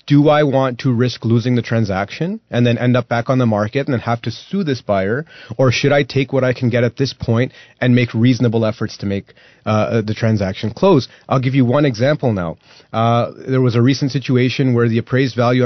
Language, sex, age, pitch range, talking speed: English, male, 30-49, 115-135 Hz, 230 wpm